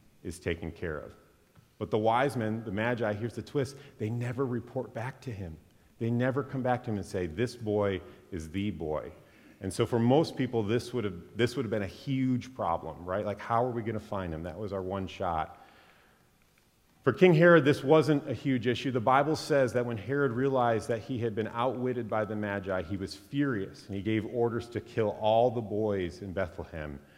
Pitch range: 90-115 Hz